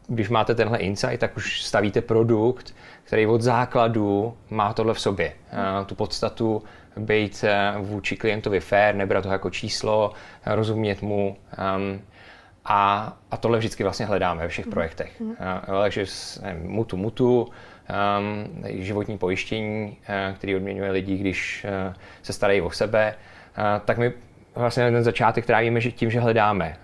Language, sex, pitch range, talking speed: Czech, male, 100-115 Hz, 130 wpm